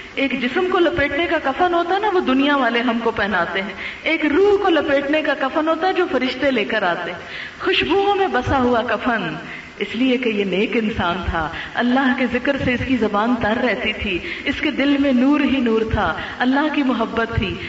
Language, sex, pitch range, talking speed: Urdu, female, 220-310 Hz, 215 wpm